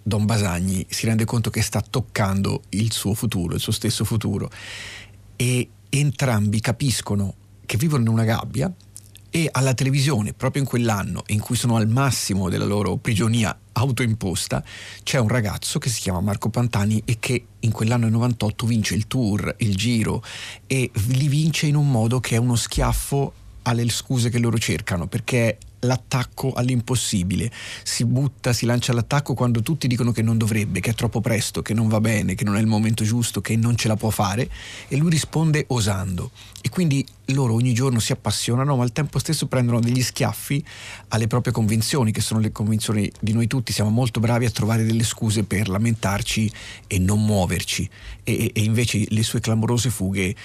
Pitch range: 105-125 Hz